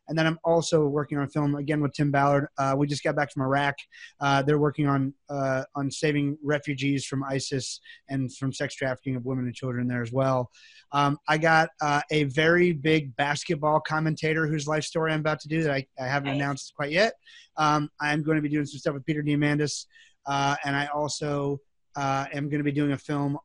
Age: 30-49